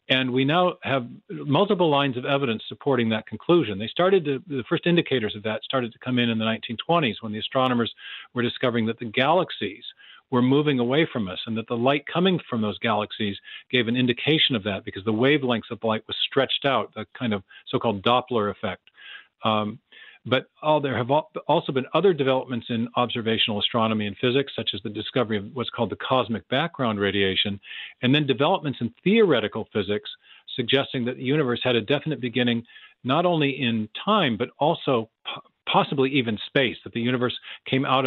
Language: English